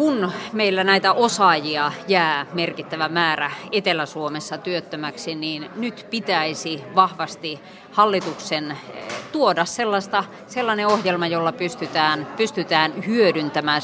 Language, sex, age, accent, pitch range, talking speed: Finnish, female, 30-49, native, 150-190 Hz, 95 wpm